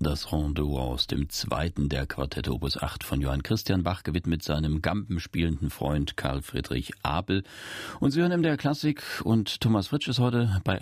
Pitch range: 85-110 Hz